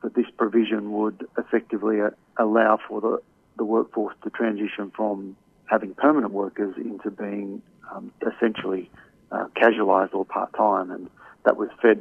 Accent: Australian